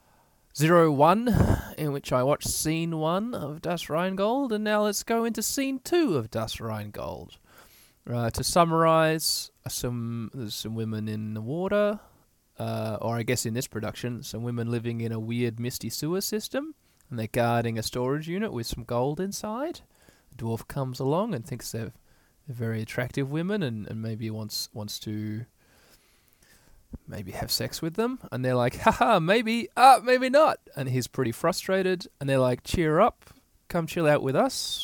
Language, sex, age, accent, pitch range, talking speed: English, male, 20-39, Australian, 115-165 Hz, 175 wpm